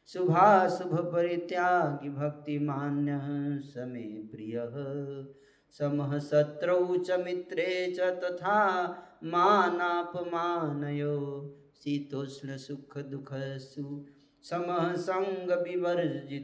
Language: Hindi